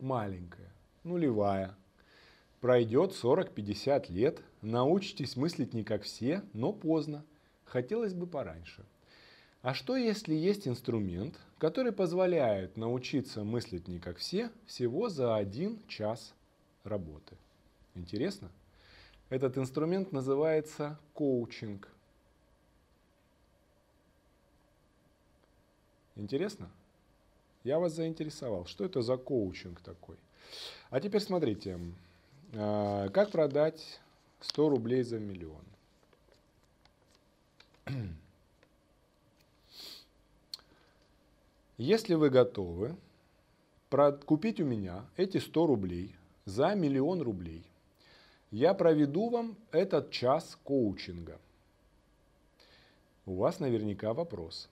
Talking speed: 85 wpm